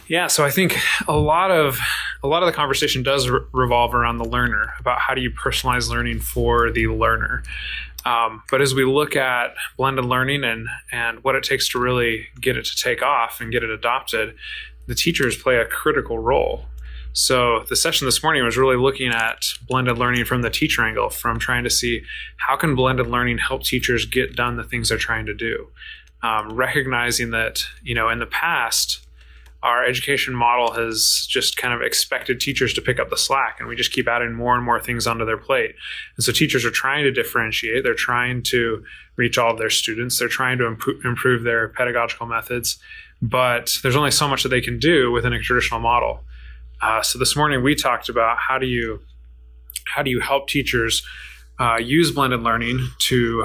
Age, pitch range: 20-39, 115-130 Hz